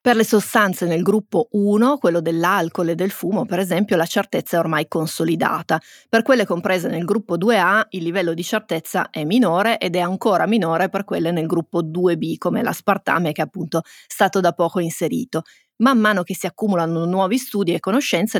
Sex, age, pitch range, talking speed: female, 30-49, 170-210 Hz, 185 wpm